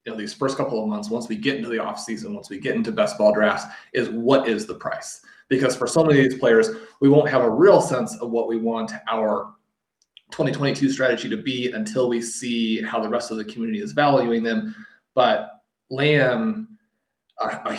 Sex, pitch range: male, 115-155 Hz